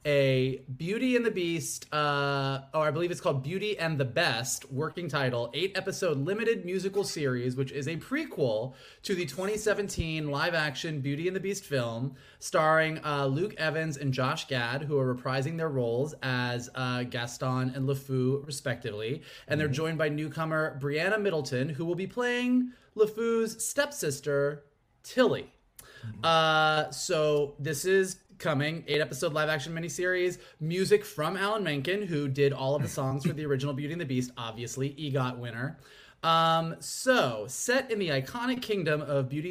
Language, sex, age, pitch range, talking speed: English, male, 20-39, 135-190 Hz, 160 wpm